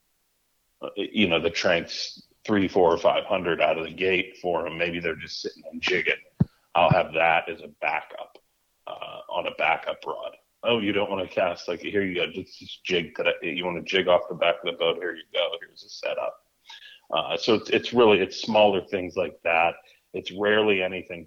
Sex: male